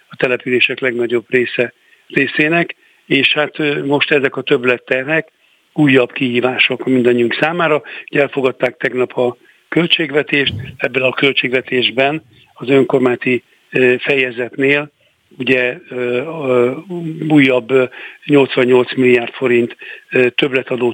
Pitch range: 125-145 Hz